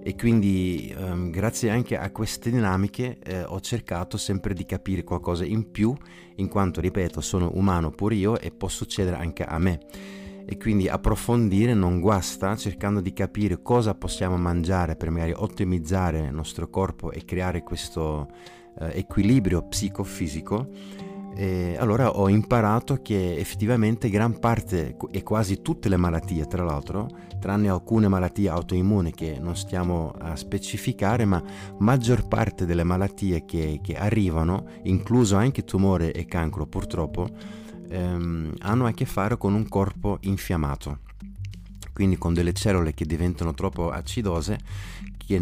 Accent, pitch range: native, 85-105 Hz